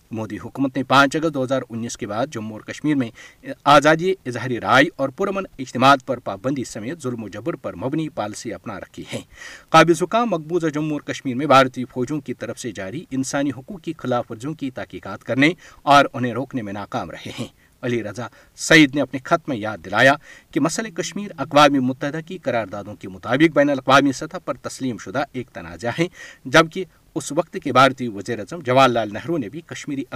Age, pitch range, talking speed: 50-69, 125-160 Hz, 200 wpm